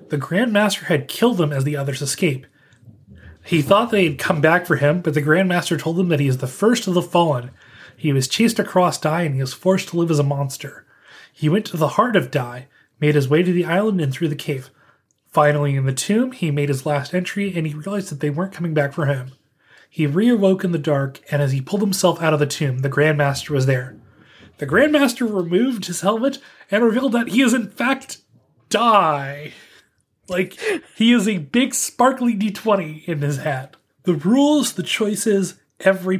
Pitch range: 145-195 Hz